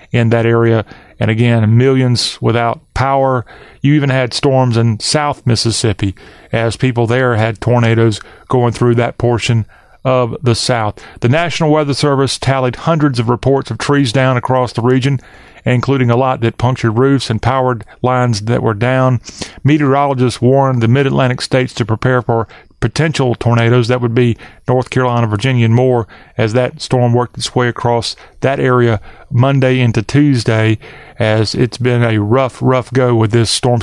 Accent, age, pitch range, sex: American, 40-59, 115-135 Hz, male